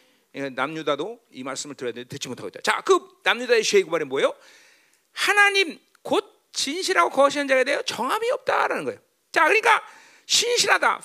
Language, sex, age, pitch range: Korean, male, 40-59, 280-435 Hz